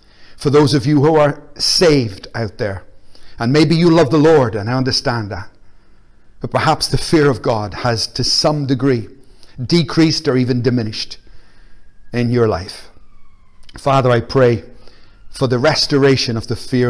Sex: male